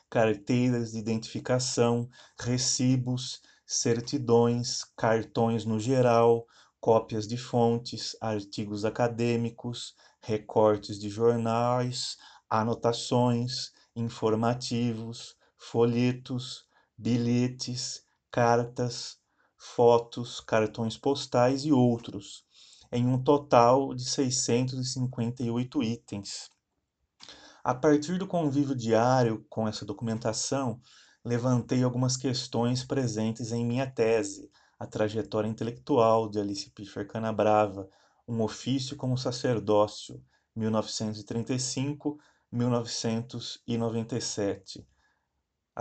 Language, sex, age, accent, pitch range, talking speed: Portuguese, male, 30-49, Brazilian, 110-130 Hz, 75 wpm